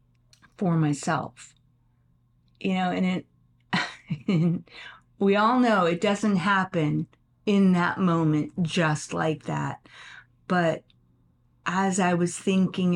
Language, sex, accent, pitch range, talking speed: English, female, American, 130-190 Hz, 105 wpm